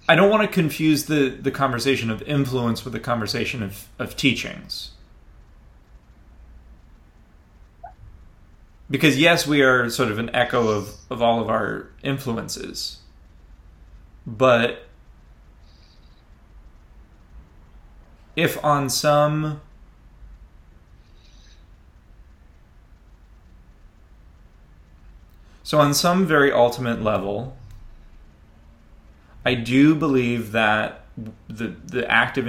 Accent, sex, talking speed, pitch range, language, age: American, male, 85 wpm, 80-120 Hz, English, 30-49